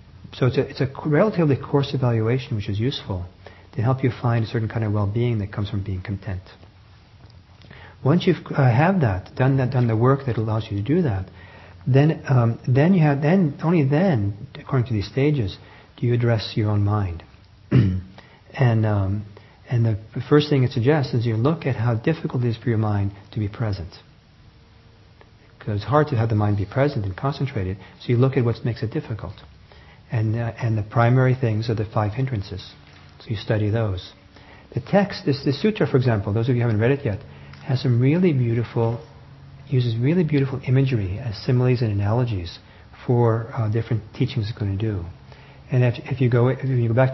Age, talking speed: 40-59, 200 wpm